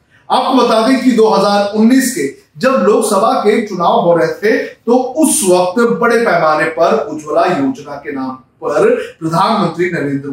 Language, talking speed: Hindi, 150 wpm